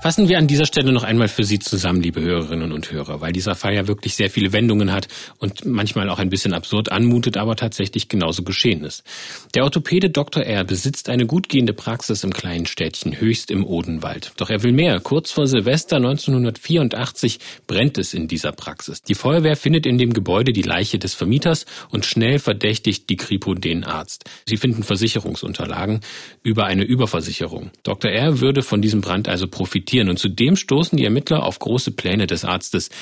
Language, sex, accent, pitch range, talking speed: German, male, German, 100-140 Hz, 185 wpm